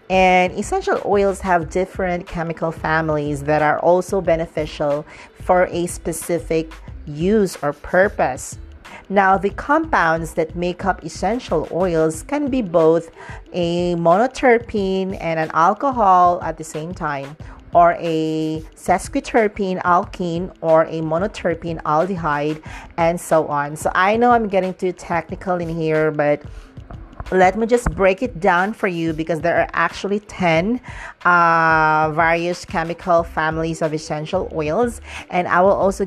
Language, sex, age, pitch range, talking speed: English, female, 40-59, 155-185 Hz, 135 wpm